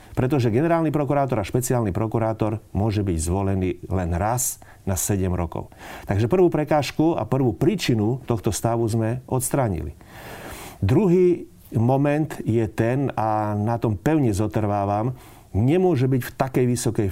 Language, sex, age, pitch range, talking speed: Slovak, male, 40-59, 105-130 Hz, 135 wpm